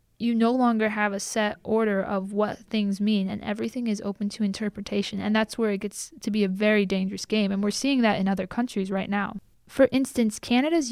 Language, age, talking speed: English, 10-29, 220 wpm